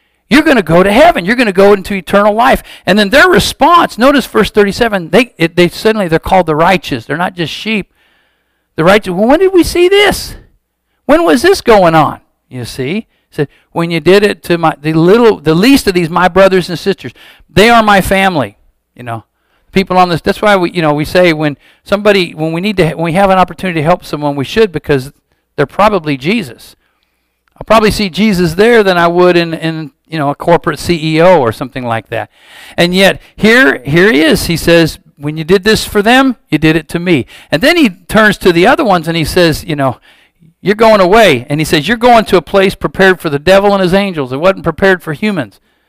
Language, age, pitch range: English, 50-69, 160-200 Hz